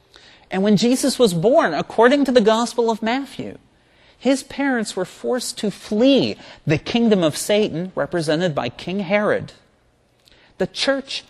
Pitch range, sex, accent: 145-210 Hz, male, American